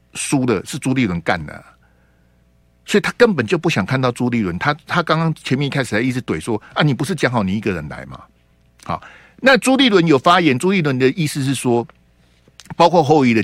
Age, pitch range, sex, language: 50-69, 105-170 Hz, male, Chinese